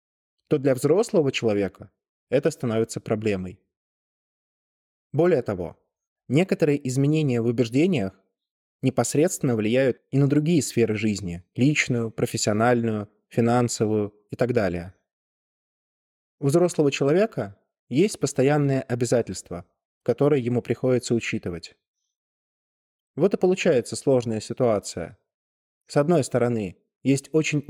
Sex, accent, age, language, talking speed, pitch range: male, native, 20-39, Russian, 100 wpm, 105-140 Hz